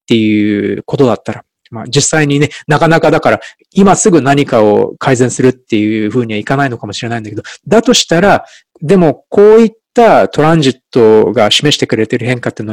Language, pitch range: Japanese, 120-180 Hz